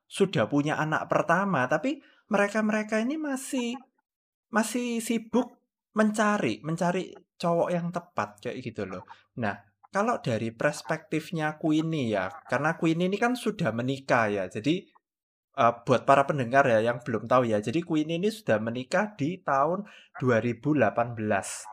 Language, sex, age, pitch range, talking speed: Indonesian, male, 20-39, 120-185 Hz, 135 wpm